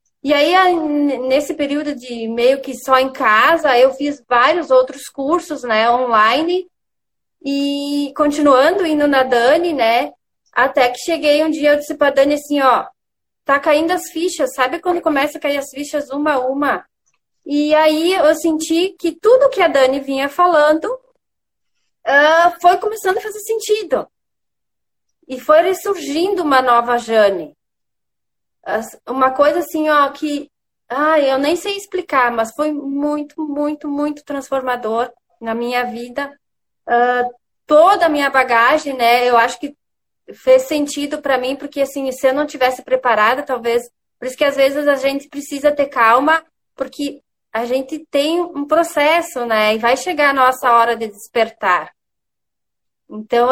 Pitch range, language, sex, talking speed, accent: 255-315 Hz, Portuguese, female, 155 wpm, Brazilian